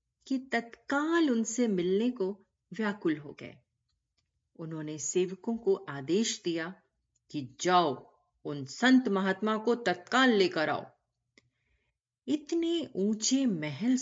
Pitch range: 155-240 Hz